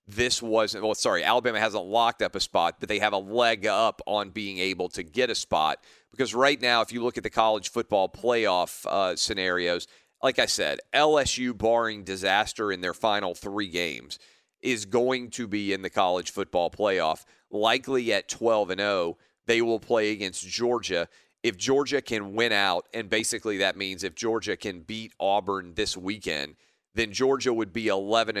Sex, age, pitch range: male, 40-59, 100-120 Hz